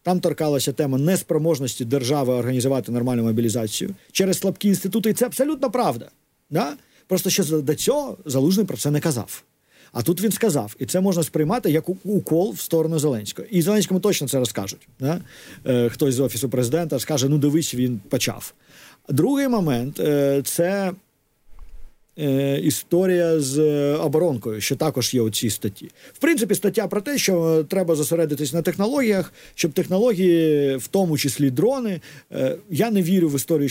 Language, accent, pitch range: Ukrainian, native, 140-200 Hz